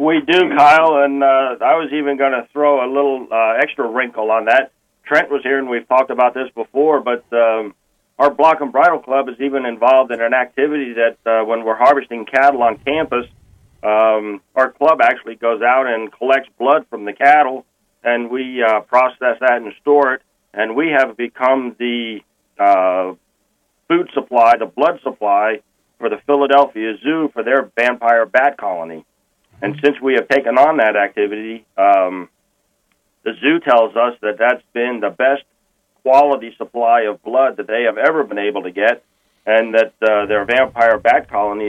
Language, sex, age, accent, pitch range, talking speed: English, male, 40-59, American, 110-140 Hz, 180 wpm